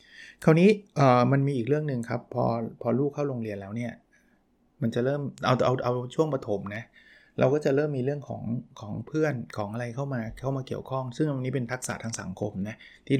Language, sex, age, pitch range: Thai, male, 20-39, 115-135 Hz